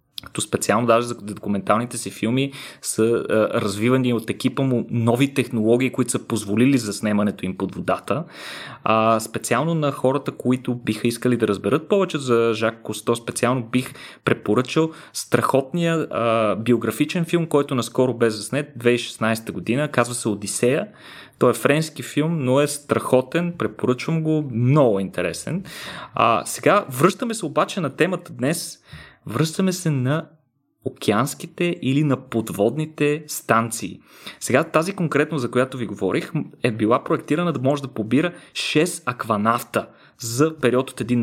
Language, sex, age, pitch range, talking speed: Bulgarian, male, 30-49, 115-150 Hz, 140 wpm